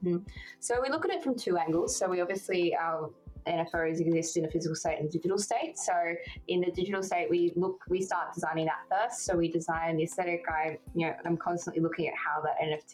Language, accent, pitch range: English, Australian, 160-180 Hz